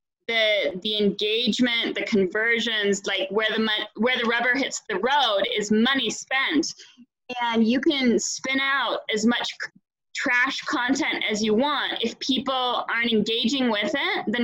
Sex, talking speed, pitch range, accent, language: female, 160 wpm, 215-270 Hz, American, English